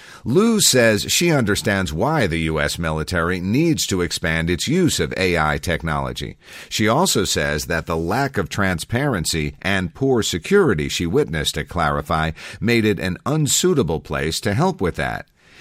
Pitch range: 80-115 Hz